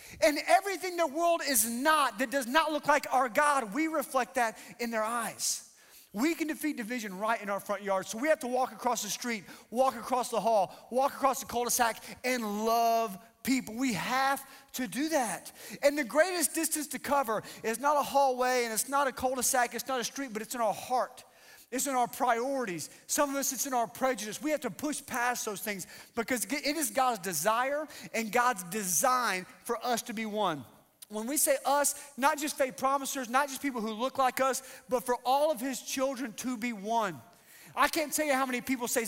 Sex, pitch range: male, 245-310 Hz